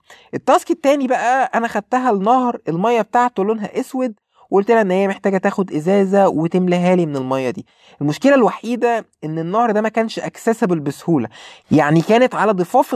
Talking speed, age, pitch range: 155 wpm, 20-39, 175-225 Hz